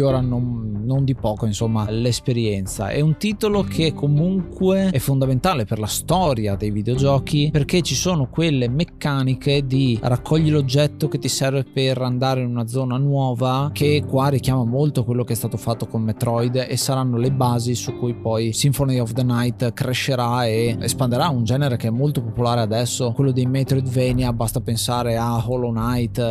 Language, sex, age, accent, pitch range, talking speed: Italian, male, 20-39, native, 115-140 Hz, 170 wpm